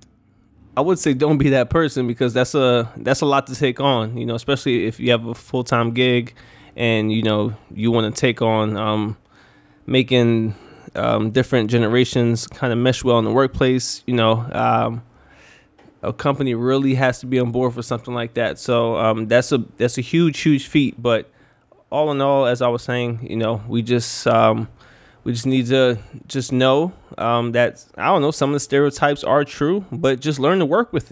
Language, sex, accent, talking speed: English, male, American, 205 wpm